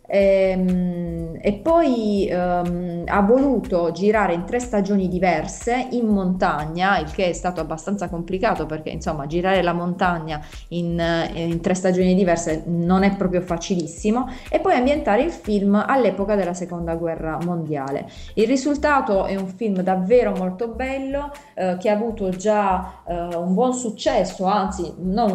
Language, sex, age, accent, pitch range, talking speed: Italian, female, 30-49, native, 175-215 Hz, 145 wpm